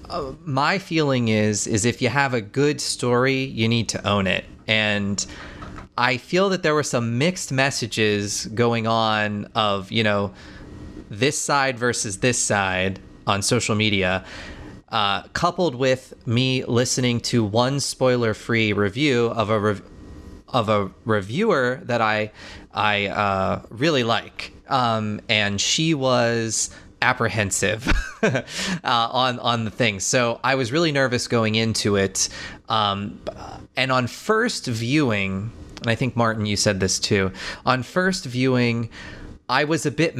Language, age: English, 30-49